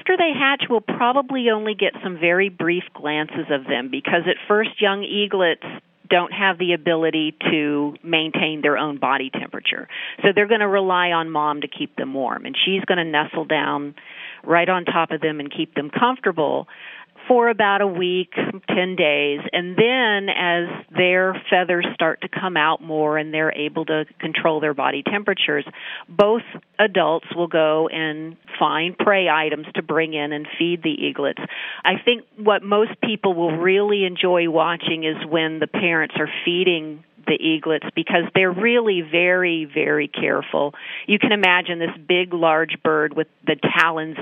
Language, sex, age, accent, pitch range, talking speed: English, female, 40-59, American, 155-195 Hz, 170 wpm